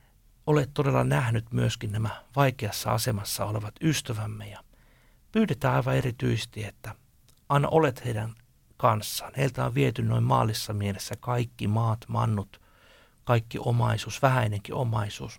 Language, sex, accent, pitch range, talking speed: Finnish, male, native, 105-125 Hz, 120 wpm